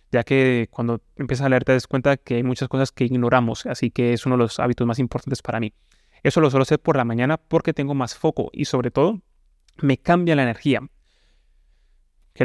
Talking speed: 215 wpm